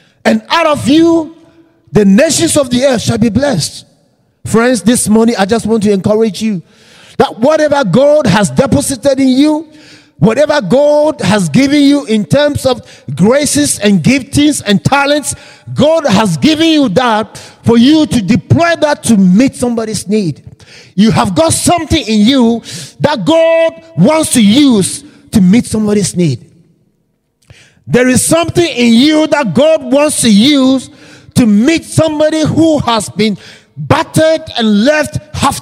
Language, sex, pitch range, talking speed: English, male, 210-295 Hz, 150 wpm